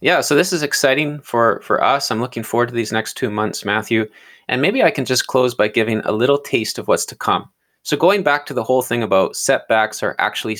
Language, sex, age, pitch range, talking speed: English, male, 20-39, 100-135 Hz, 245 wpm